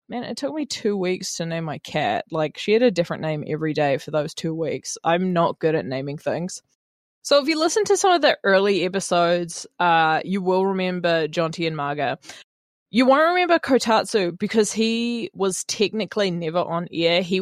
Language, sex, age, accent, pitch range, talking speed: English, female, 20-39, Australian, 165-205 Hz, 195 wpm